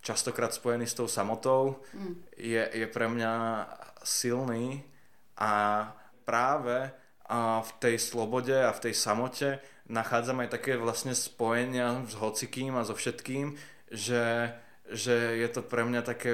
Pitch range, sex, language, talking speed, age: 110-120 Hz, male, Slovak, 135 wpm, 20-39